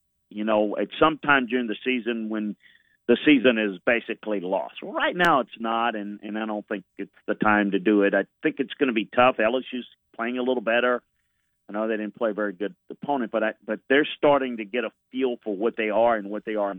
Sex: male